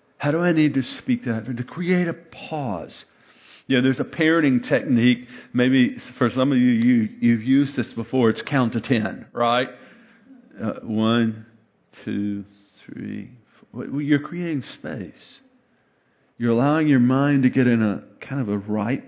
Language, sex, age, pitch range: English, male, 50-69, 115-145 Hz